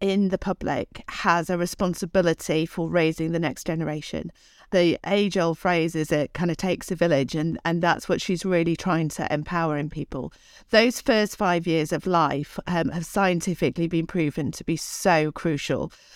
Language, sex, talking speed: English, female, 175 wpm